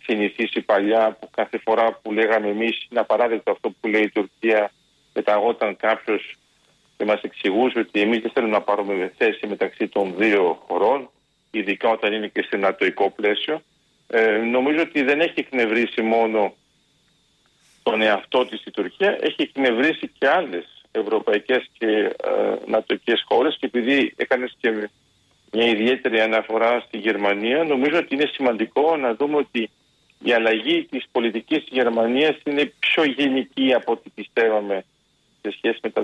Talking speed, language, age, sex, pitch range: 150 wpm, Greek, 50-69, male, 115-155 Hz